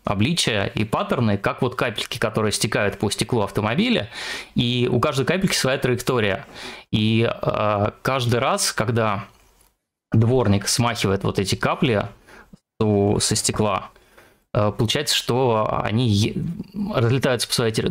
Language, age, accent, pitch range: Russian, 20-39, native, 105-125 Hz